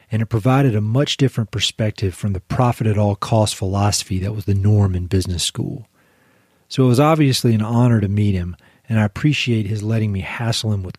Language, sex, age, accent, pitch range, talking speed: English, male, 40-59, American, 105-125 Hz, 195 wpm